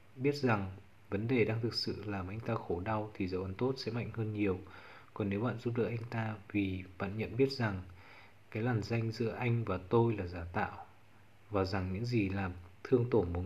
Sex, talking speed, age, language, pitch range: male, 225 wpm, 20-39, Vietnamese, 100-120 Hz